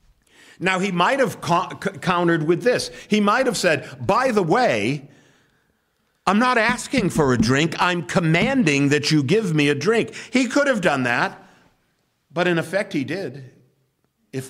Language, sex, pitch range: English, male, 130-175 Hz